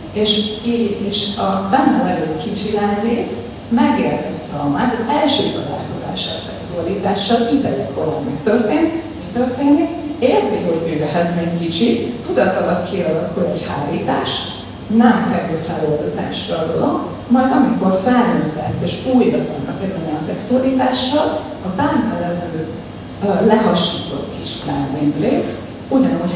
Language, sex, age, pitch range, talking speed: Hungarian, female, 30-49, 175-235 Hz, 115 wpm